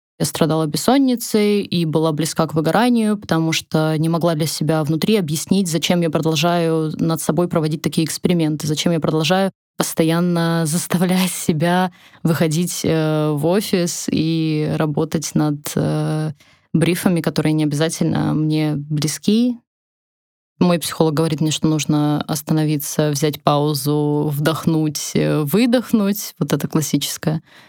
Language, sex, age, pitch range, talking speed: Russian, female, 20-39, 155-180 Hz, 120 wpm